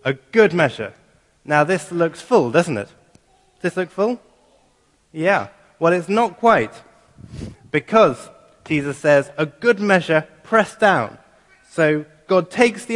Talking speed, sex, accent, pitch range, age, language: 140 wpm, male, British, 150-190 Hz, 30-49, English